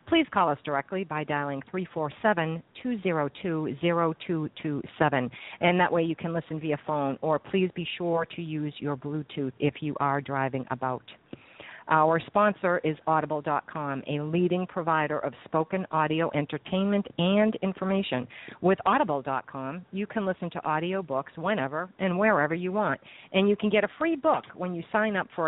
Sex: female